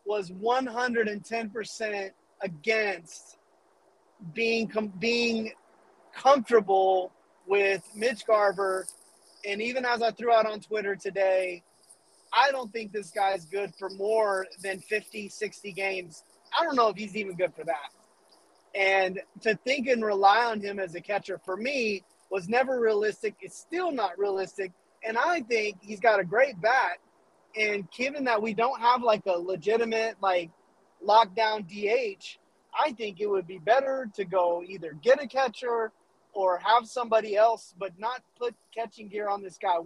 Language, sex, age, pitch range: English, male, 30-49, 195-240 Hz